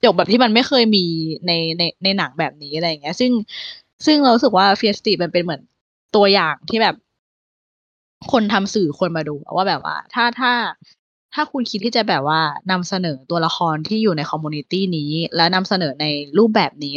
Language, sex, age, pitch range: Thai, female, 20-39, 160-220 Hz